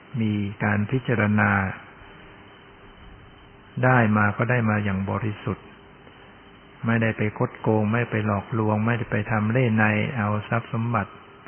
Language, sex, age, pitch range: Thai, male, 60-79, 105-125 Hz